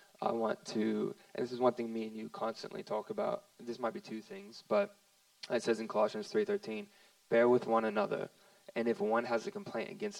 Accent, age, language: American, 20-39, English